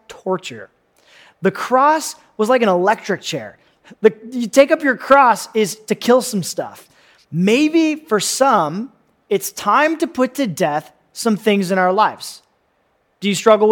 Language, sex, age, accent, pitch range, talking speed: English, male, 30-49, American, 195-255 Hz, 160 wpm